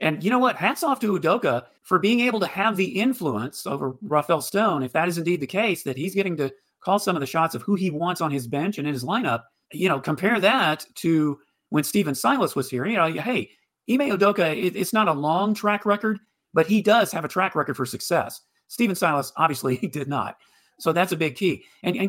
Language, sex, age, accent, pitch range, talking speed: English, male, 40-59, American, 145-200 Hz, 235 wpm